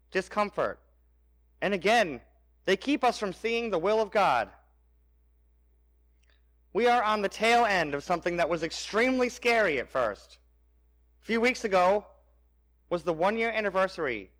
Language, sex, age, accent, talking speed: English, male, 30-49, American, 145 wpm